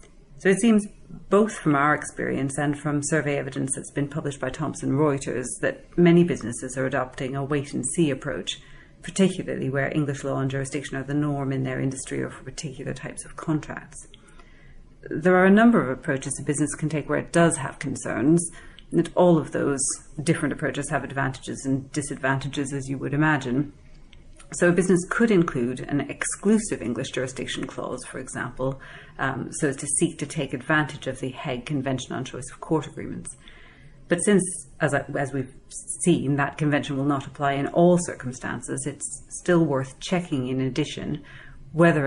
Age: 40-59